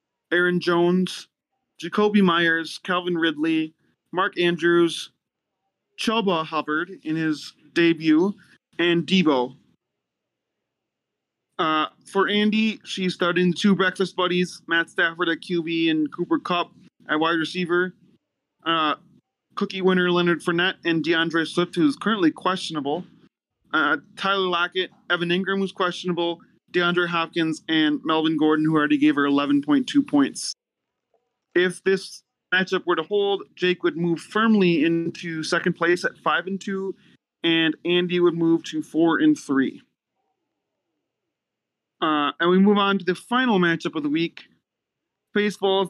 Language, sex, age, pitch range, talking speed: English, male, 20-39, 165-195 Hz, 125 wpm